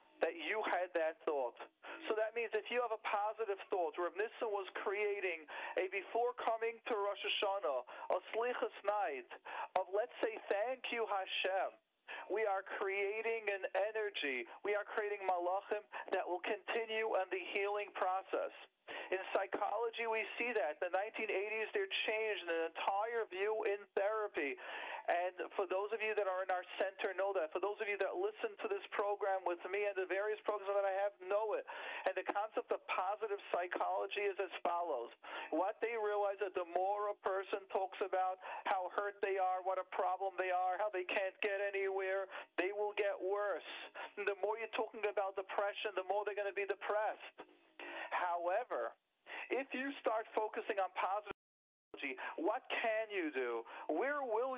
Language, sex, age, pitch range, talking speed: English, male, 40-59, 195-235 Hz, 175 wpm